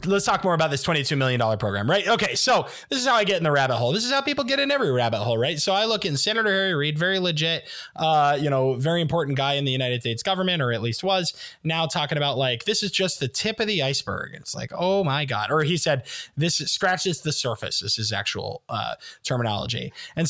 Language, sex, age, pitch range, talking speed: English, male, 20-39, 130-180 Hz, 250 wpm